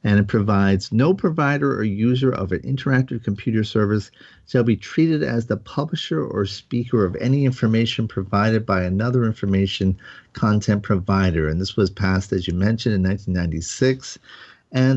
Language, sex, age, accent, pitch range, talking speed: English, male, 40-59, American, 100-125 Hz, 155 wpm